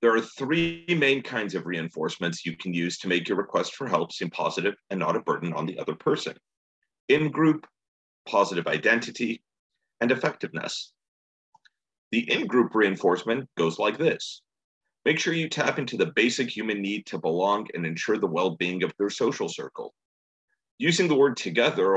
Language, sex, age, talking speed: English, male, 40-59, 165 wpm